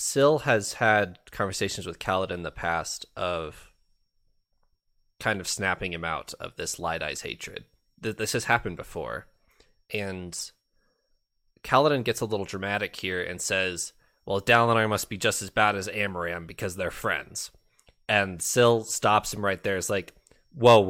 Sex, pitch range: male, 90-105 Hz